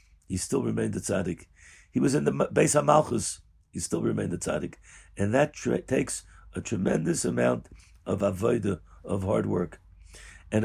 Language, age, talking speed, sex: English, 50-69, 165 wpm, male